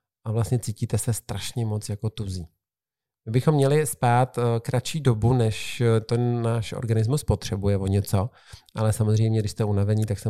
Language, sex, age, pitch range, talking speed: Czech, male, 40-59, 105-125 Hz, 165 wpm